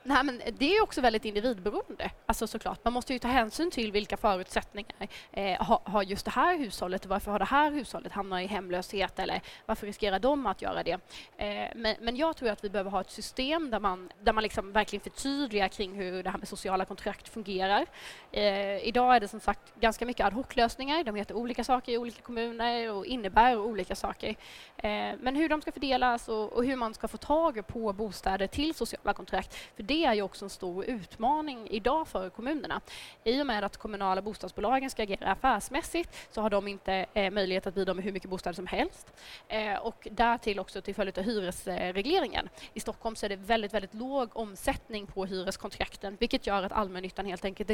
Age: 20-39